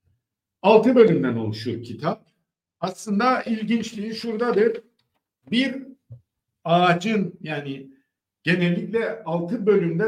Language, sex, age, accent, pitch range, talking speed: Turkish, male, 50-69, native, 150-220 Hz, 75 wpm